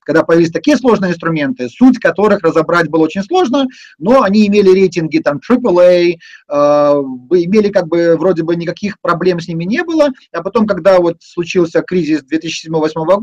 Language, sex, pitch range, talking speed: Russian, male, 165-235 Hz, 165 wpm